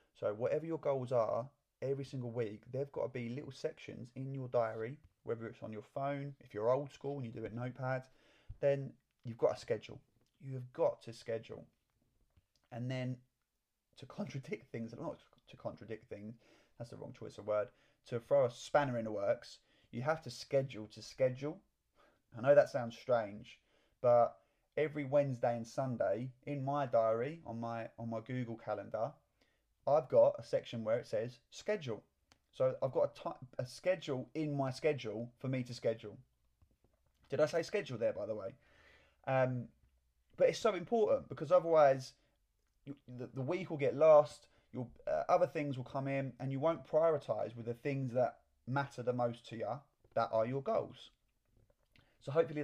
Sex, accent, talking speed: male, British, 180 wpm